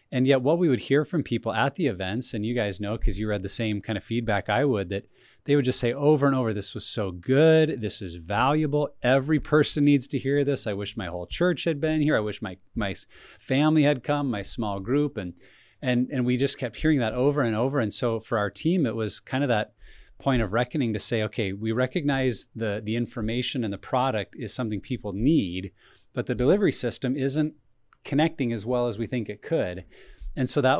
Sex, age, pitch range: male, 30-49, 110-140 Hz